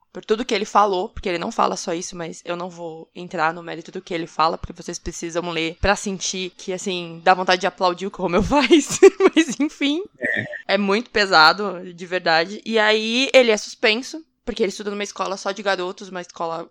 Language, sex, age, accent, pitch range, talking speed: Portuguese, female, 20-39, Brazilian, 185-255 Hz, 220 wpm